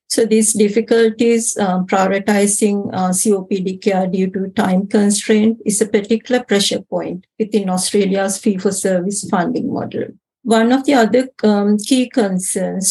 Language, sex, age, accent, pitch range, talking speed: English, female, 50-69, Indian, 195-225 Hz, 135 wpm